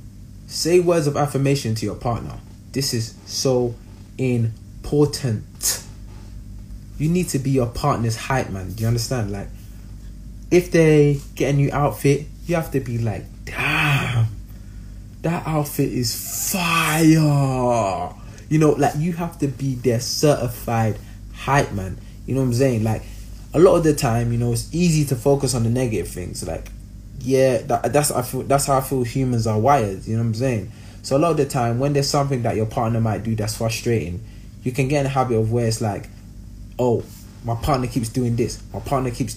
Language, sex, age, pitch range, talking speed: English, male, 20-39, 105-140 Hz, 190 wpm